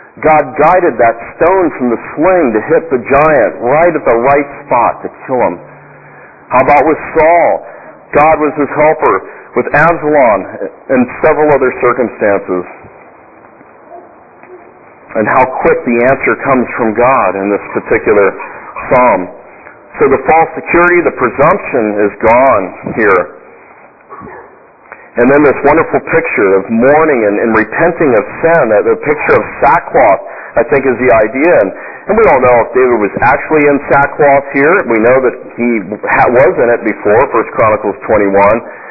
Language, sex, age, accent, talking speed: English, male, 50-69, American, 155 wpm